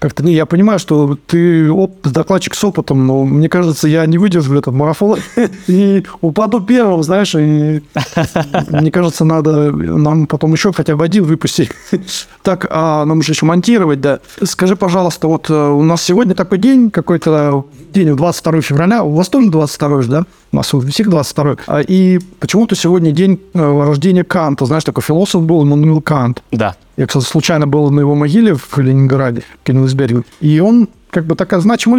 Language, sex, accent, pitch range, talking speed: Russian, male, native, 145-185 Hz, 170 wpm